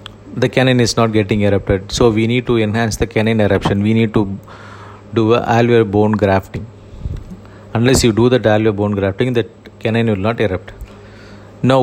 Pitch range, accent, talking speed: 100-115 Hz, Indian, 180 wpm